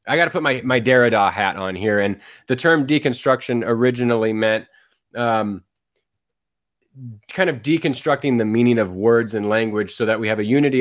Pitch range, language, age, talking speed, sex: 110-130 Hz, English, 20-39, 180 wpm, male